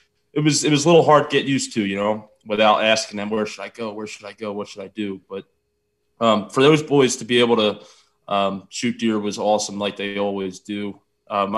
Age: 20-39